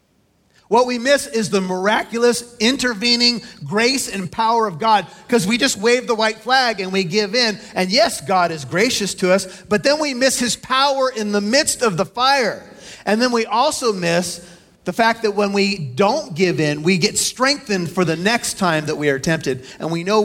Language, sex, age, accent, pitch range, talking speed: English, male, 40-59, American, 155-225 Hz, 205 wpm